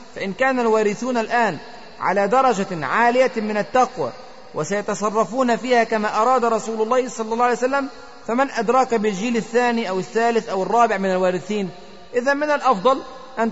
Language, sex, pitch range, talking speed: Arabic, male, 210-255 Hz, 145 wpm